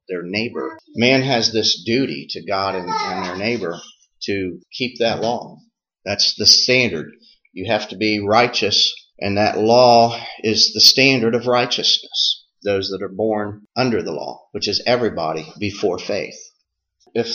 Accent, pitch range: American, 105-140 Hz